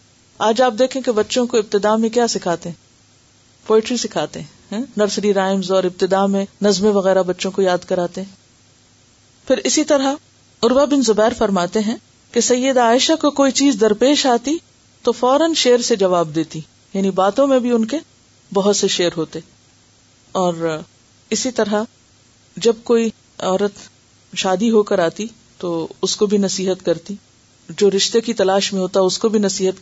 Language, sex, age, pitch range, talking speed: Urdu, female, 50-69, 175-235 Hz, 165 wpm